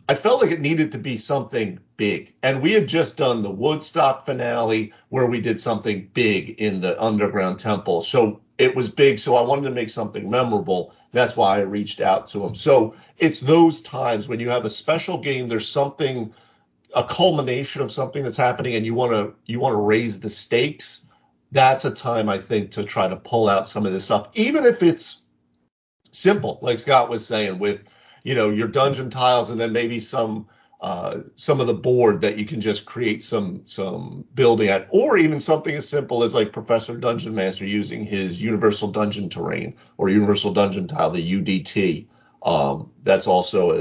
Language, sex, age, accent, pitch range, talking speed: English, male, 50-69, American, 105-135 Hz, 195 wpm